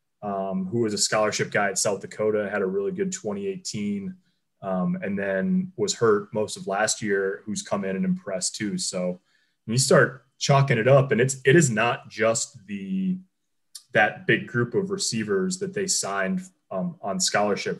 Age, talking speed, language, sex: 20-39, 180 wpm, English, male